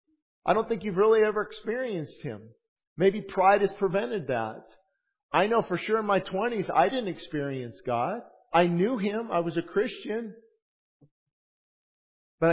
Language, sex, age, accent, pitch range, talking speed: English, male, 50-69, American, 165-230 Hz, 155 wpm